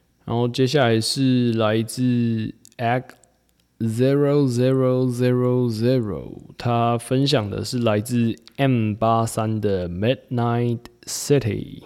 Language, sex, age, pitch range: Chinese, male, 20-39, 105-130 Hz